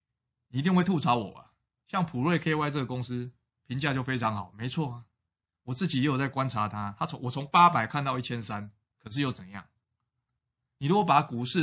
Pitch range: 110-145 Hz